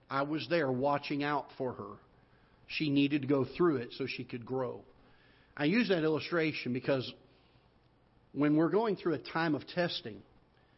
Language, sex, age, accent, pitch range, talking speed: English, male, 50-69, American, 130-155 Hz, 165 wpm